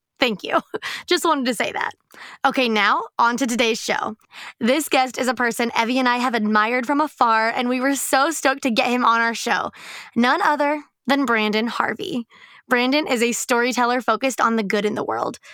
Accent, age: American, 20-39